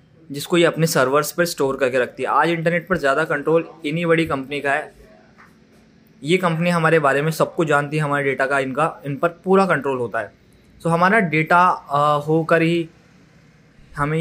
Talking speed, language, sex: 185 wpm, Hindi, male